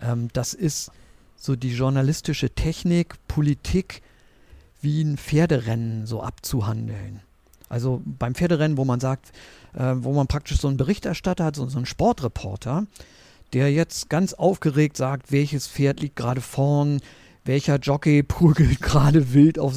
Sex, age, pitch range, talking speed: male, 50-69, 120-140 Hz, 135 wpm